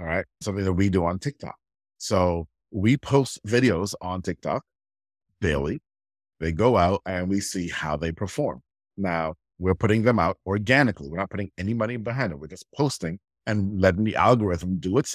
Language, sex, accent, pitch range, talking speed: English, male, American, 90-120 Hz, 180 wpm